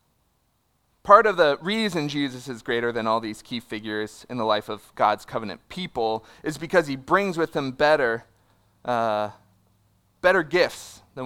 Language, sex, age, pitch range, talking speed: English, male, 30-49, 110-160 Hz, 160 wpm